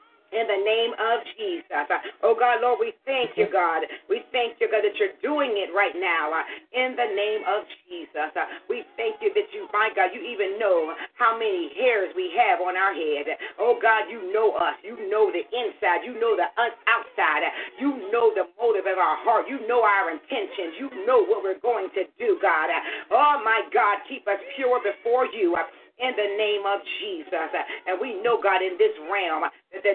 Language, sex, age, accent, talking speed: English, female, 40-59, American, 200 wpm